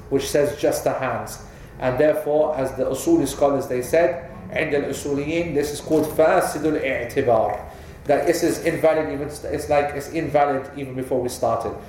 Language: English